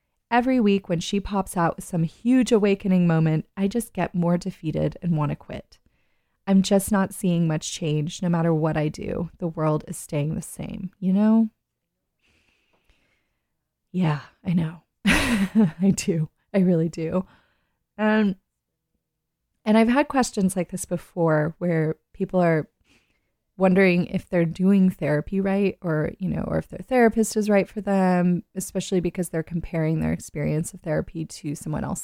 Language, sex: English, female